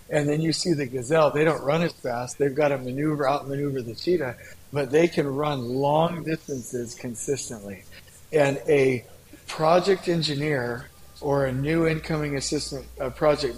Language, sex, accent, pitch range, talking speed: English, male, American, 125-155 Hz, 155 wpm